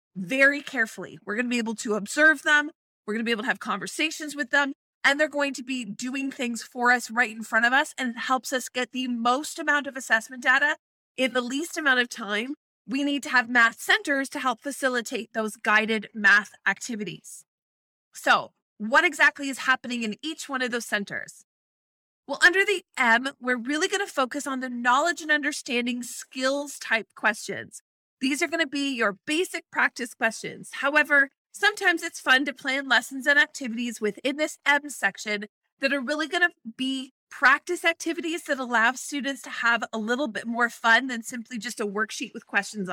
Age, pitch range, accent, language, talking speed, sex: 30-49, 230-290 Hz, American, English, 190 wpm, female